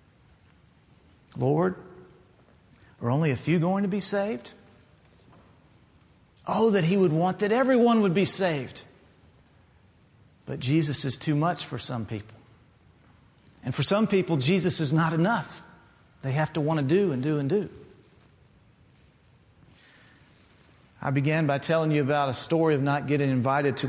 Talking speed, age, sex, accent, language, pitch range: 145 wpm, 40-59, male, American, English, 130-175 Hz